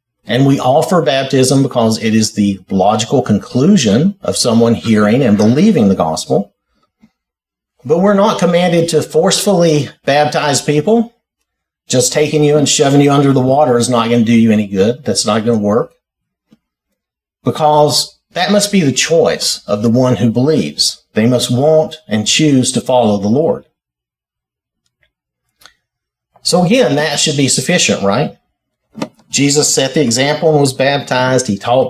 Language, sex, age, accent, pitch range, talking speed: English, male, 50-69, American, 115-155 Hz, 155 wpm